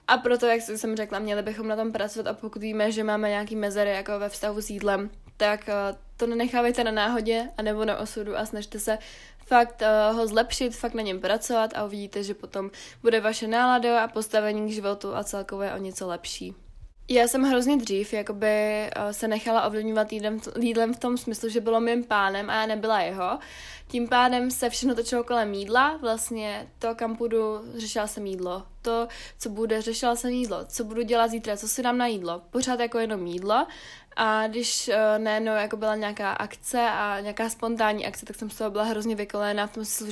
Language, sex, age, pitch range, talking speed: Czech, female, 20-39, 210-235 Hz, 195 wpm